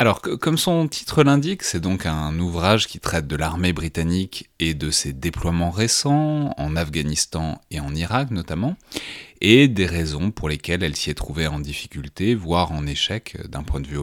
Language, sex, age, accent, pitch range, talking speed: French, male, 30-49, French, 80-105 Hz, 185 wpm